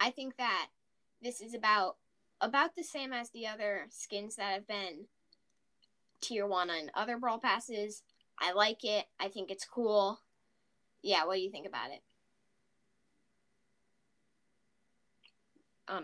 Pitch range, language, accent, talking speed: 210-280 Hz, English, American, 140 wpm